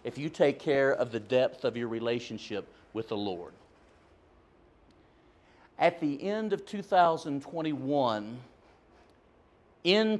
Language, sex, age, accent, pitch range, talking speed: English, male, 50-69, American, 120-155 Hz, 105 wpm